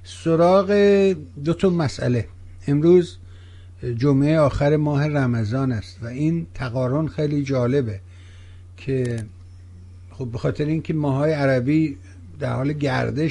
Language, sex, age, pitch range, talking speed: Persian, male, 60-79, 90-150 Hz, 115 wpm